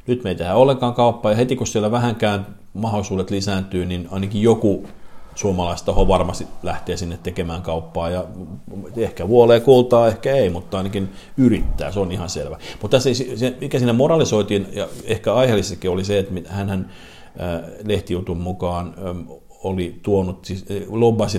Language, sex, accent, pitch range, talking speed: Finnish, male, native, 85-100 Hz, 145 wpm